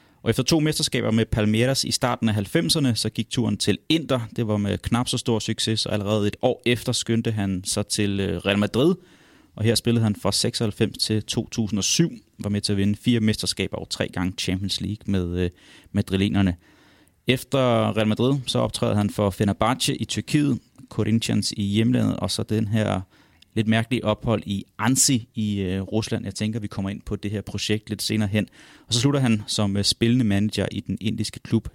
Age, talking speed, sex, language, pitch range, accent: 30-49, 195 wpm, male, Danish, 100-120 Hz, native